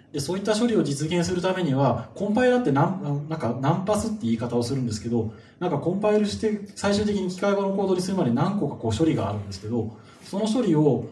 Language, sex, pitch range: Japanese, male, 120-175 Hz